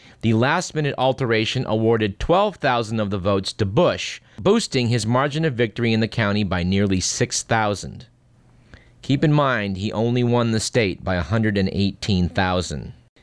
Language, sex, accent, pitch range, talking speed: English, male, American, 95-130 Hz, 140 wpm